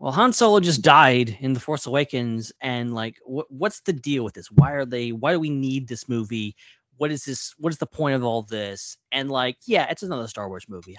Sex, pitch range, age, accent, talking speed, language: male, 110-145 Hz, 30-49, American, 250 wpm, English